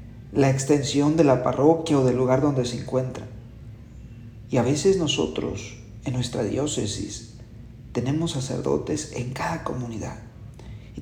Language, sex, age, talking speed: Spanish, male, 40-59, 130 wpm